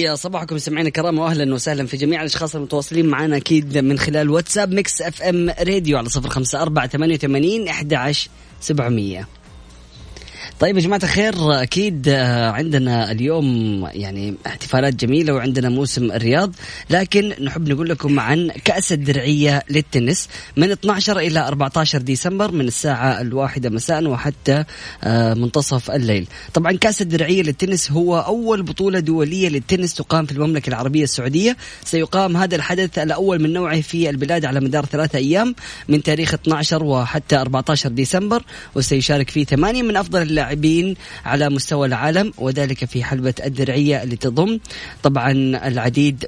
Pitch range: 130-165 Hz